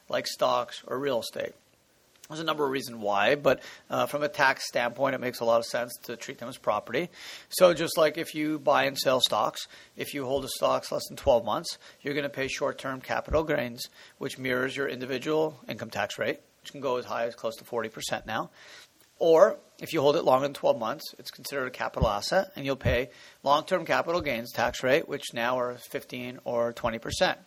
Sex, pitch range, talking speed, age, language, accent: male, 125-160 Hz, 215 wpm, 40-59, English, American